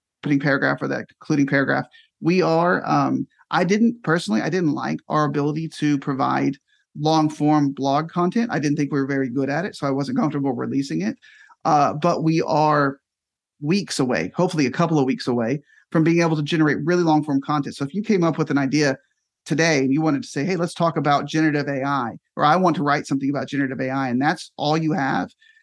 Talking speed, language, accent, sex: 220 wpm, English, American, male